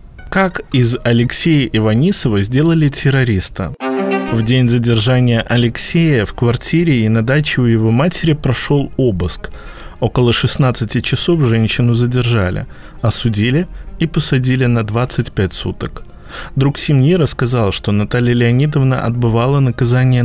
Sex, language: male, Russian